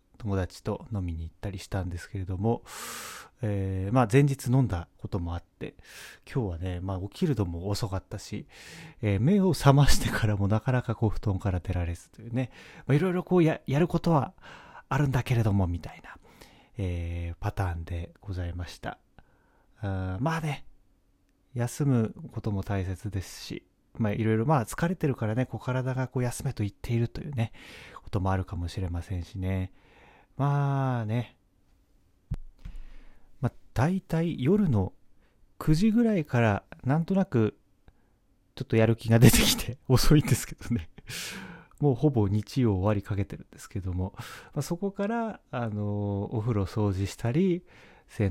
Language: Japanese